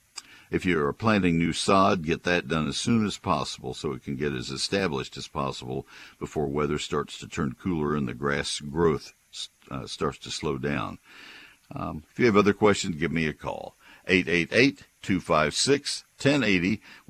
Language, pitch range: English, 75-105 Hz